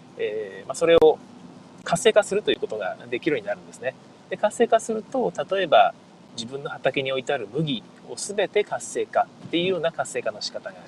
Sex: male